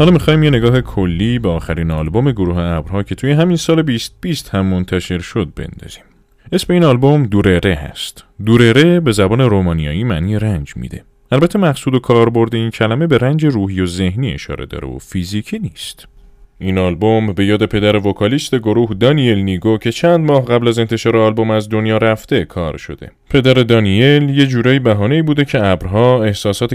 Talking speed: 175 wpm